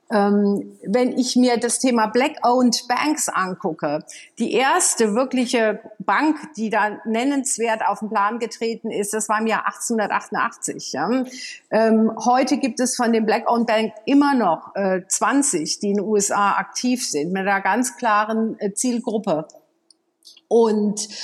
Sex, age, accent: female, 50-69, German